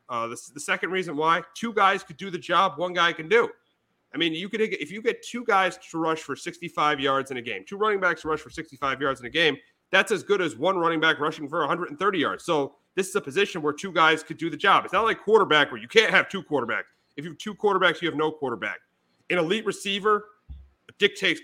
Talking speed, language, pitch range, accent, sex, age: 255 wpm, English, 140-175 Hz, American, male, 30-49